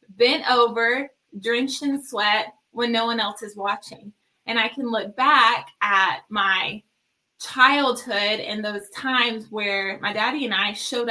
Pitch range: 210-250 Hz